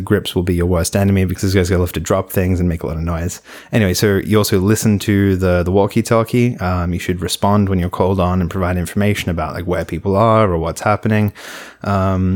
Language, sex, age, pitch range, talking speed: English, male, 20-39, 85-100 Hz, 250 wpm